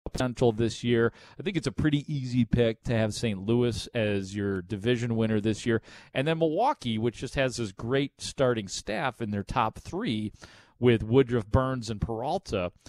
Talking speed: 175 wpm